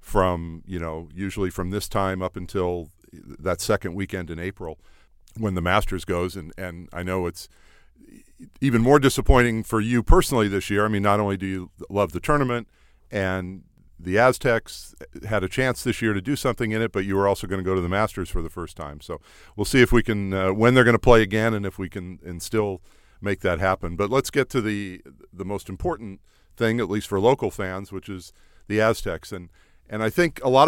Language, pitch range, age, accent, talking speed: English, 95-115 Hz, 50-69, American, 220 wpm